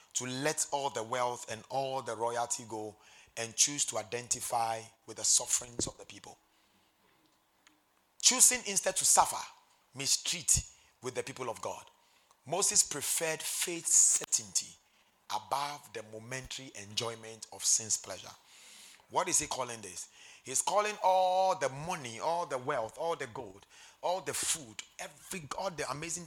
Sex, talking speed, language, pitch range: male, 145 wpm, English, 120-160 Hz